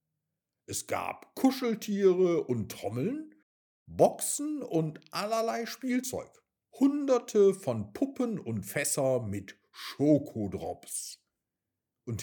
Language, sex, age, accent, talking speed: German, male, 50-69, German, 85 wpm